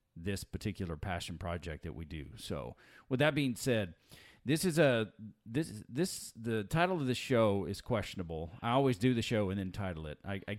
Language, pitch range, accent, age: English, 95-125 Hz, American, 40-59